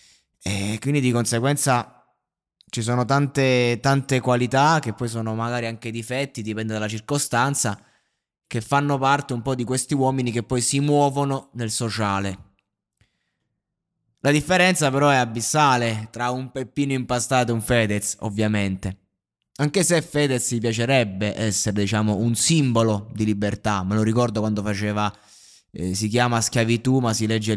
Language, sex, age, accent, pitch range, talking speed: Italian, male, 20-39, native, 105-125 Hz, 150 wpm